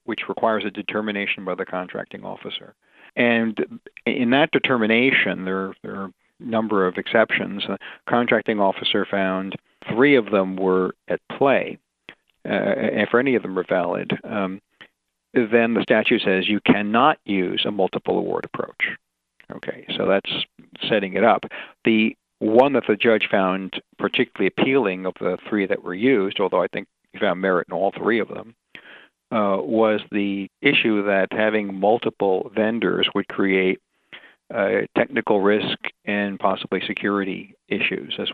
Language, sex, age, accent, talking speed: English, male, 50-69, American, 150 wpm